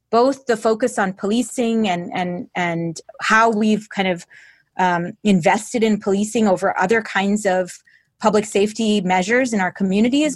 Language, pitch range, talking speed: English, 195-230 Hz, 150 wpm